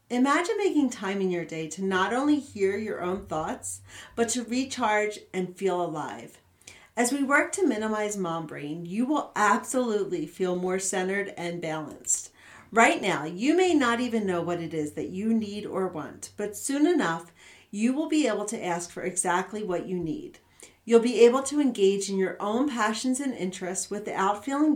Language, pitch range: English, 180-245 Hz